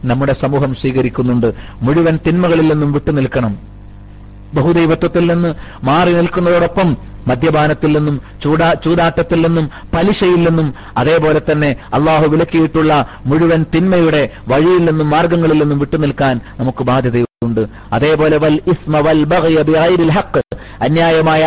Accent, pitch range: native, 130-165 Hz